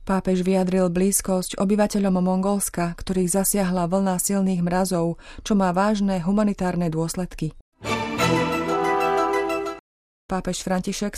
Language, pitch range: Slovak, 175-205 Hz